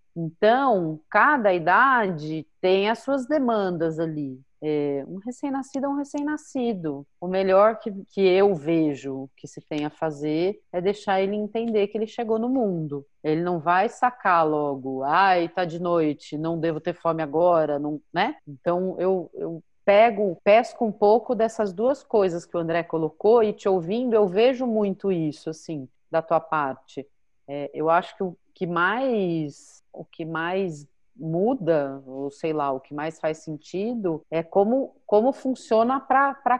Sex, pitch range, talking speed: female, 160-245 Hz, 155 wpm